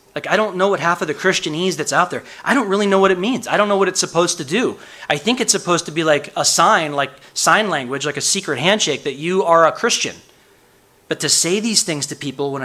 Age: 20-39